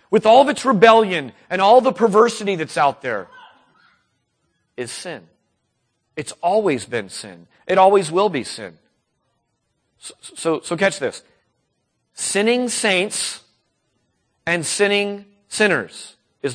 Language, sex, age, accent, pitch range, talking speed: English, male, 40-59, American, 155-225 Hz, 125 wpm